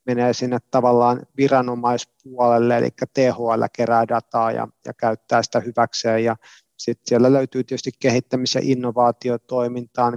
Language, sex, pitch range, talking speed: Finnish, male, 115-130 Hz, 120 wpm